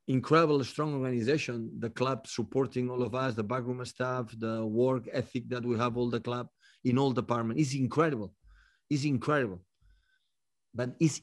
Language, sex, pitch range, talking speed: English, male, 115-145 Hz, 160 wpm